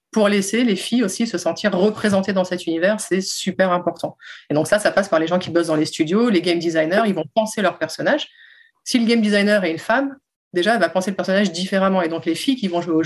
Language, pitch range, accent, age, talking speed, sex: French, 165-205 Hz, French, 30-49, 260 wpm, female